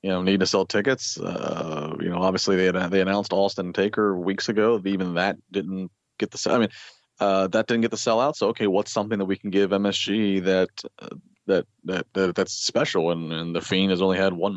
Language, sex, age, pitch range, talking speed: English, male, 30-49, 90-100 Hz, 235 wpm